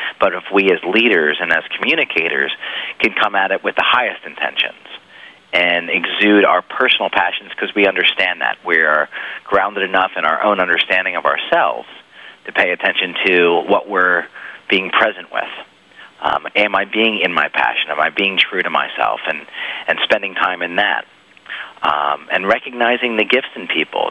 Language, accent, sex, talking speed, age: English, American, male, 170 wpm, 40-59